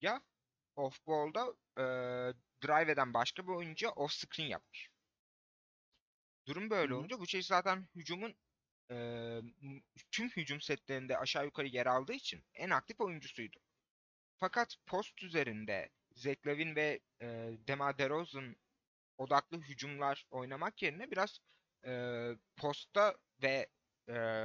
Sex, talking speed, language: male, 105 wpm, Turkish